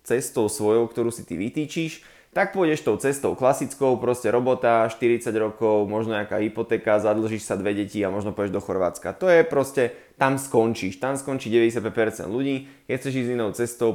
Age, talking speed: 20-39, 180 wpm